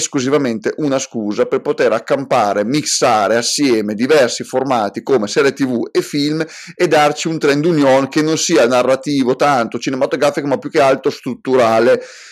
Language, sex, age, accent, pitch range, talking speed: Italian, male, 30-49, native, 130-165 Hz, 150 wpm